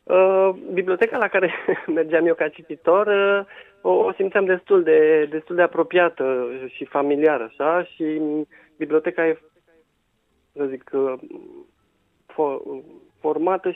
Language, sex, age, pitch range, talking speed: Romanian, male, 40-59, 140-170 Hz, 100 wpm